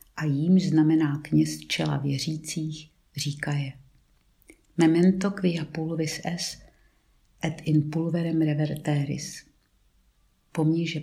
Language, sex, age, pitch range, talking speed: Czech, female, 50-69, 145-180 Hz, 90 wpm